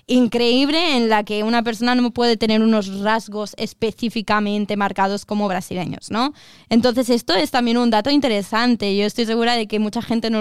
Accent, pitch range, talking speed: Spanish, 215-240 Hz, 180 wpm